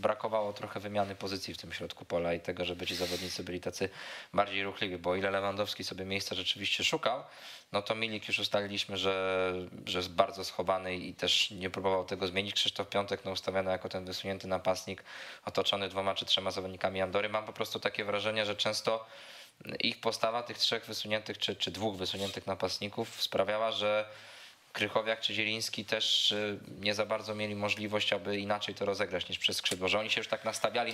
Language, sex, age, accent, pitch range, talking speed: Polish, male, 20-39, native, 95-110 Hz, 185 wpm